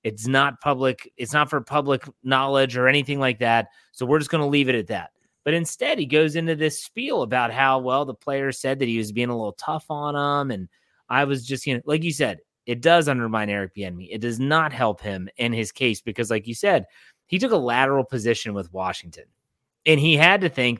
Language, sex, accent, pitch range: English, male, American, 115-145 Hz